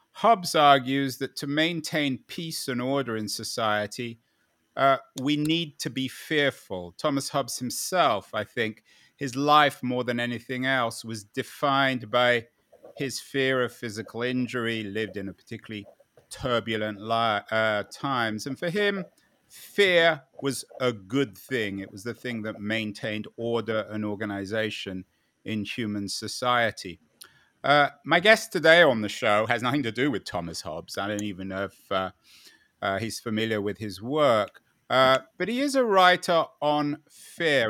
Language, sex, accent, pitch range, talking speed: English, male, British, 110-145 Hz, 155 wpm